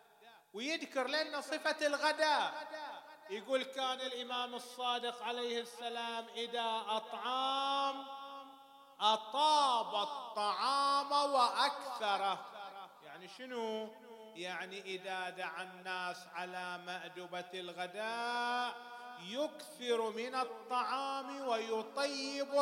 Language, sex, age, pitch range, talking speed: English, male, 30-49, 195-260 Hz, 75 wpm